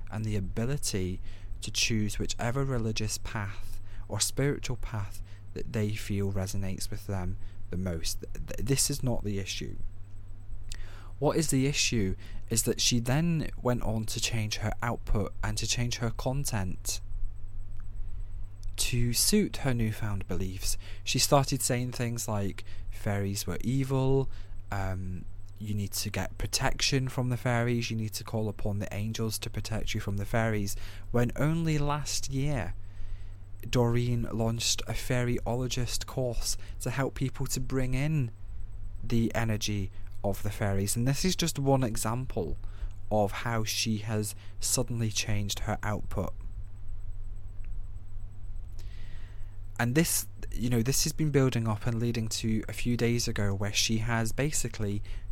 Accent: British